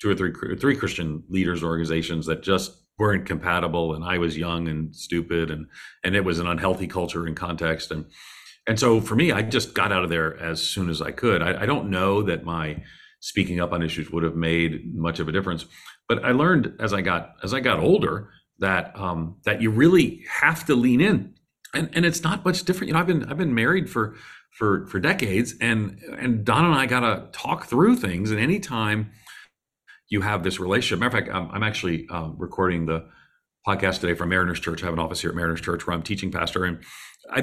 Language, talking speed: English, 225 wpm